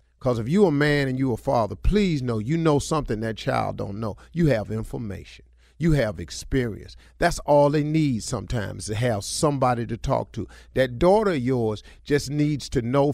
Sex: male